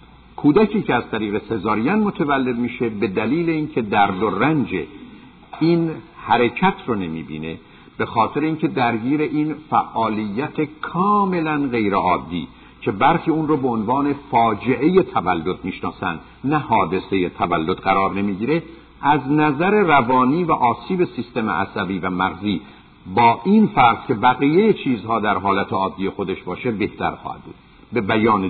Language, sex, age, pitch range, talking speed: Persian, male, 50-69, 100-145 Hz, 135 wpm